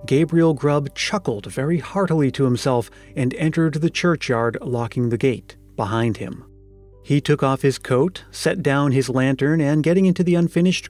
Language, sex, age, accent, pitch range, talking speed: English, male, 40-59, American, 120-165 Hz, 165 wpm